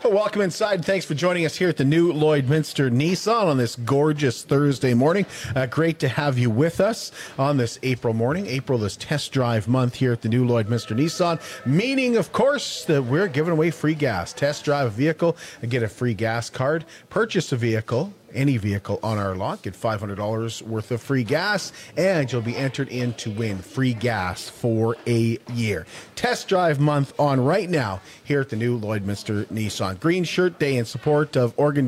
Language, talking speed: English, 195 wpm